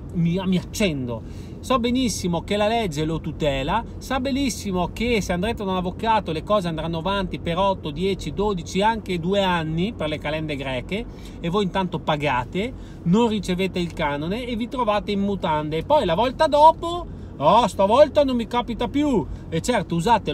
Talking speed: 175 wpm